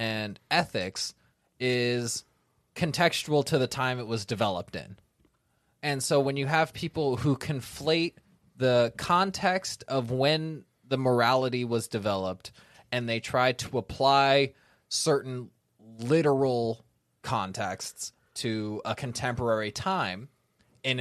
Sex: male